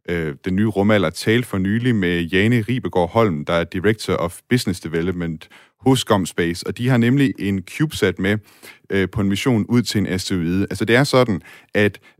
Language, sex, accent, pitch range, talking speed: Danish, male, native, 90-115 Hz, 180 wpm